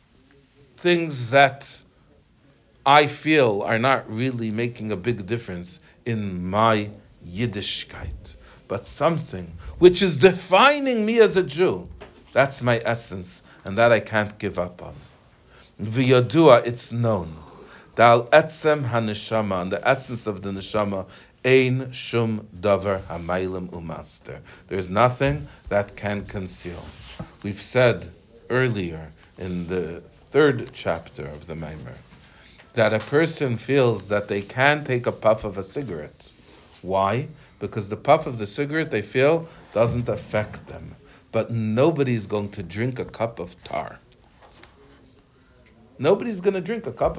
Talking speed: 130 wpm